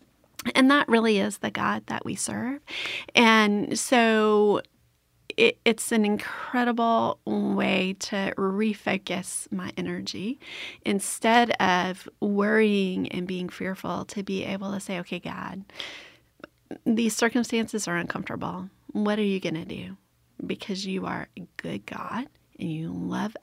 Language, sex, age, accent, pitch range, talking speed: English, female, 30-49, American, 185-230 Hz, 130 wpm